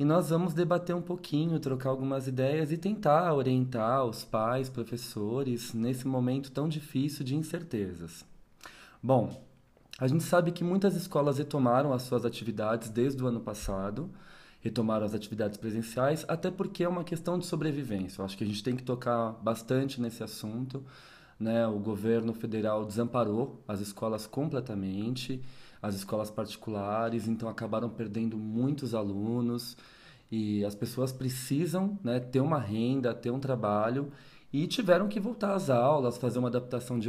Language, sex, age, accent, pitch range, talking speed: Portuguese, male, 20-39, Brazilian, 115-155 Hz, 155 wpm